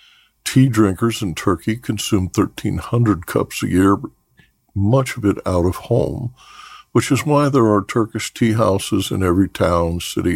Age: 60-79